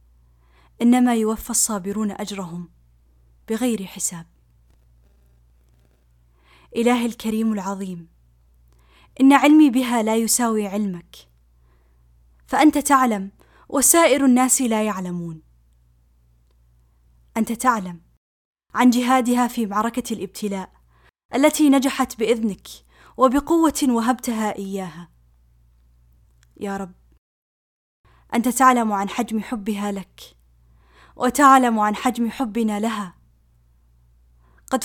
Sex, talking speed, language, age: female, 85 wpm, Arabic, 10-29